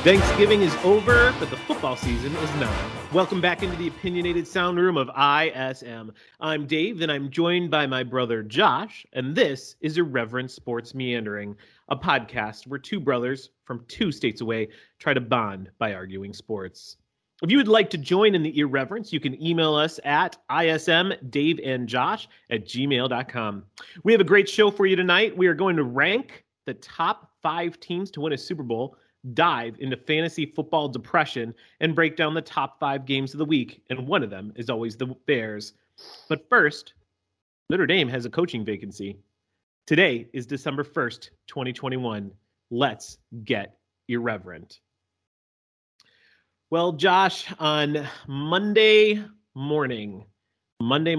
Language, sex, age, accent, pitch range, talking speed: English, male, 30-49, American, 115-165 Hz, 155 wpm